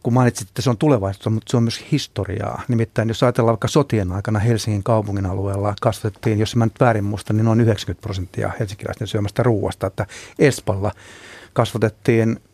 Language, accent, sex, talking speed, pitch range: Finnish, native, male, 175 wpm, 105-120 Hz